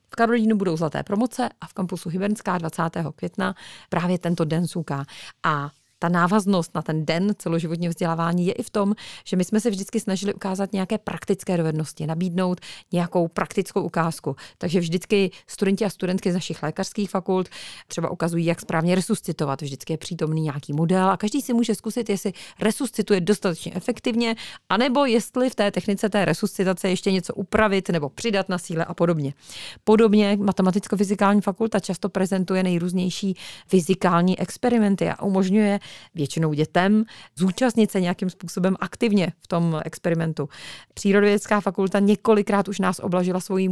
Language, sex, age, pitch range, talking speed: Czech, female, 30-49, 170-205 Hz, 155 wpm